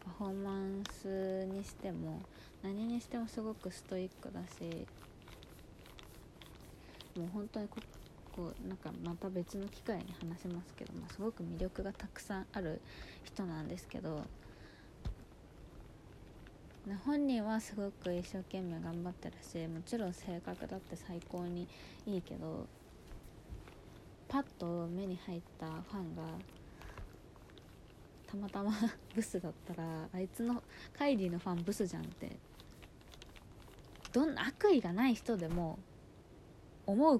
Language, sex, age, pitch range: Japanese, female, 20-39, 175-230 Hz